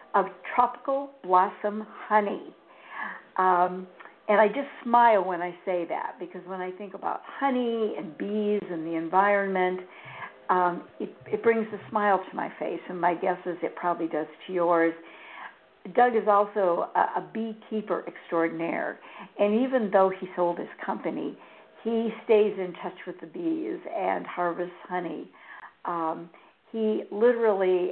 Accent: American